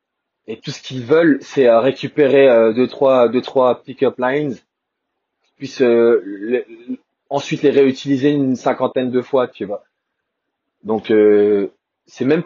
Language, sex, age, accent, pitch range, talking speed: French, male, 20-39, French, 120-155 Hz, 140 wpm